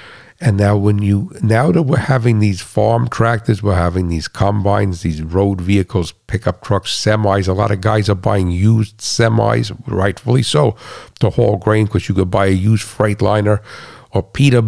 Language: English